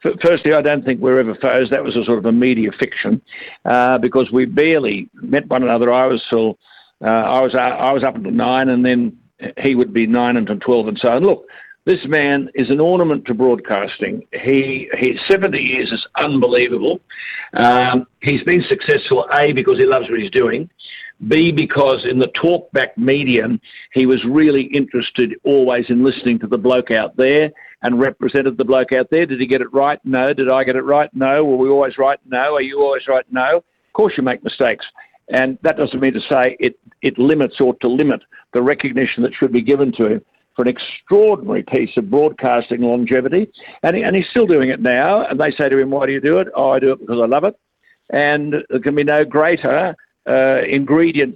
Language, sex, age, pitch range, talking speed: English, male, 50-69, 125-150 Hz, 215 wpm